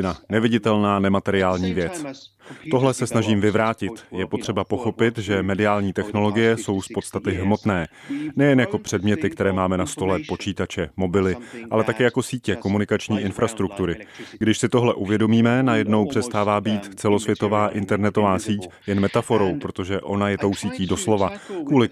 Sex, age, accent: male, 30-49, native